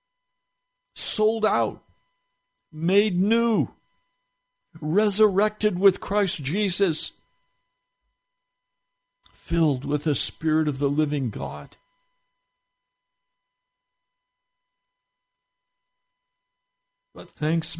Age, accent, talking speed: 60-79, American, 60 wpm